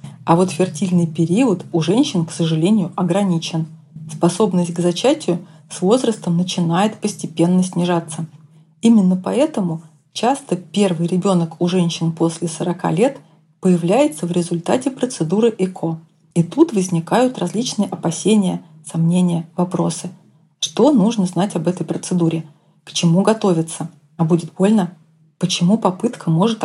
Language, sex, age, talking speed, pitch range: Russian, female, 30-49, 120 wpm, 165-195 Hz